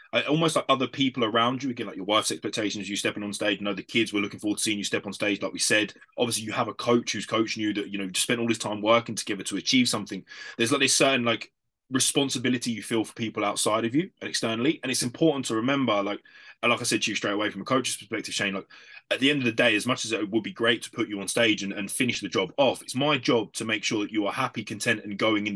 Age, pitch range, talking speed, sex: 20-39, 105-125 Hz, 295 wpm, male